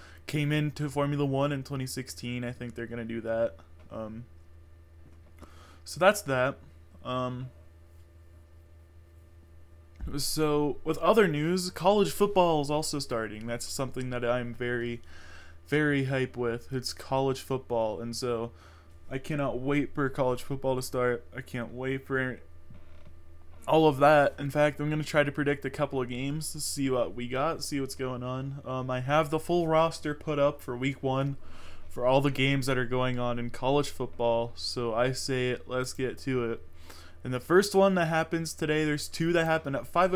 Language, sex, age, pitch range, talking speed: English, male, 20-39, 110-150 Hz, 175 wpm